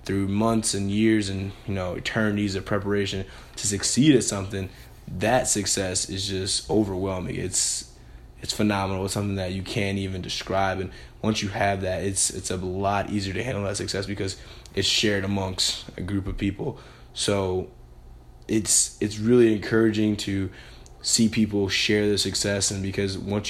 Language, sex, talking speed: English, male, 165 wpm